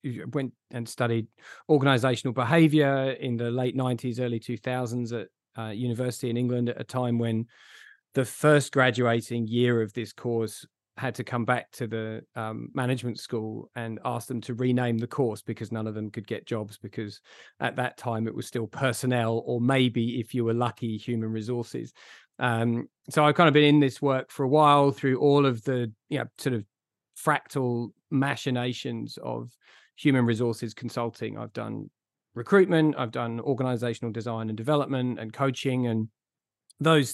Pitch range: 115-135 Hz